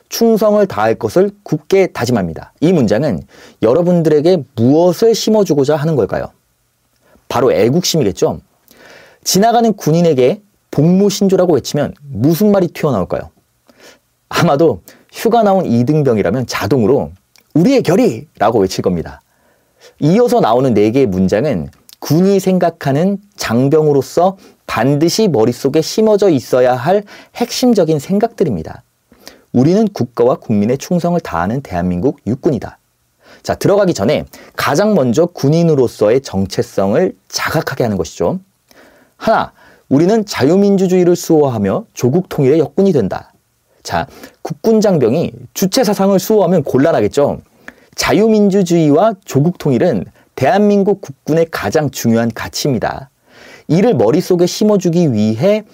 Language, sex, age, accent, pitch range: Korean, male, 30-49, native, 140-205 Hz